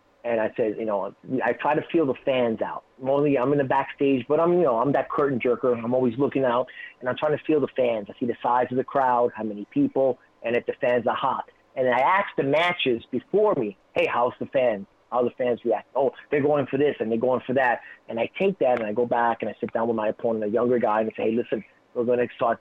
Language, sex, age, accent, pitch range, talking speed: English, male, 30-49, American, 120-155 Hz, 280 wpm